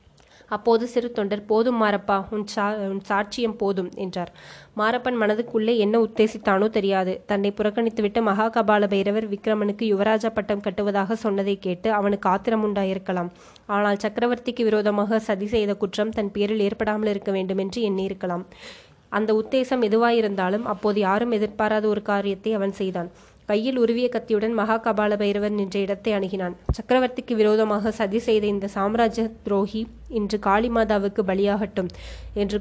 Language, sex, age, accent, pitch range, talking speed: Tamil, female, 20-39, native, 200-225 Hz, 120 wpm